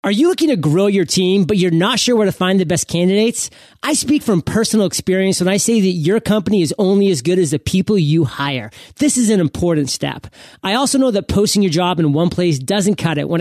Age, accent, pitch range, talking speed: 30-49, American, 165-215 Hz, 250 wpm